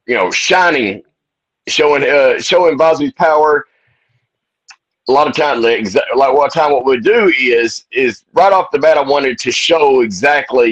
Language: English